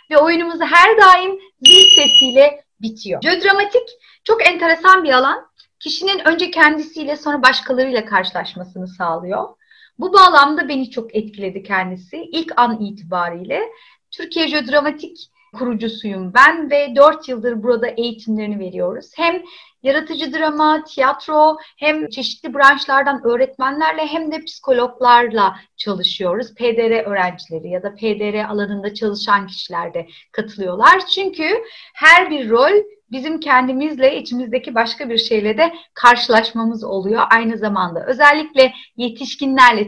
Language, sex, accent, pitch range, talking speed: Turkish, female, native, 220-315 Hz, 115 wpm